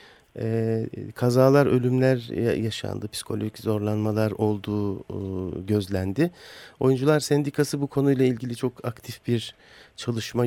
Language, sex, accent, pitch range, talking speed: Turkish, male, native, 110-130 Hz, 90 wpm